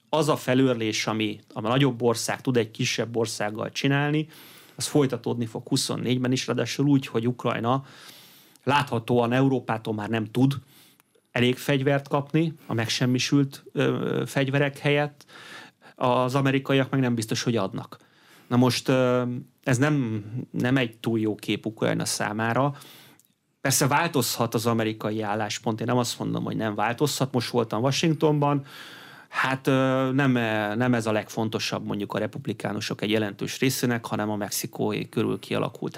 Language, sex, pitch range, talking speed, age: Hungarian, male, 110-140 Hz, 140 wpm, 30-49